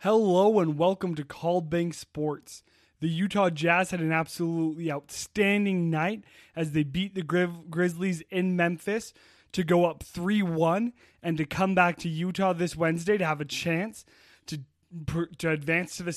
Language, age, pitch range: English, 20-39, 155-185 Hz